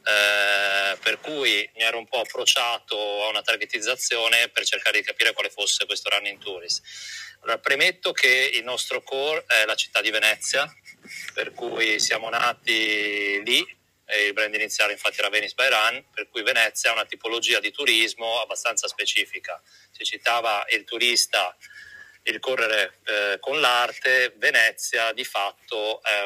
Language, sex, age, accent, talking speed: Italian, male, 30-49, native, 155 wpm